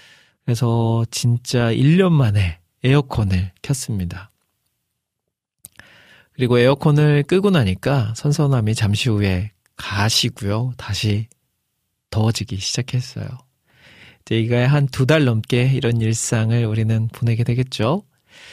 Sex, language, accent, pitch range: male, Korean, native, 110-140 Hz